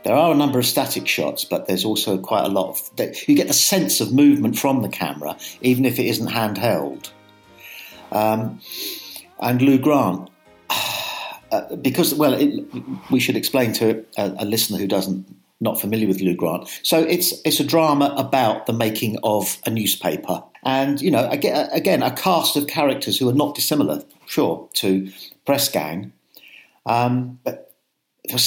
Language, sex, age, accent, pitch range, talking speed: English, male, 50-69, British, 115-160 Hz, 170 wpm